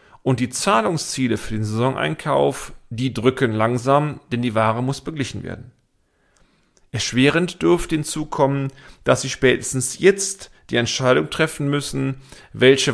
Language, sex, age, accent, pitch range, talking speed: German, male, 40-59, German, 115-140 Hz, 125 wpm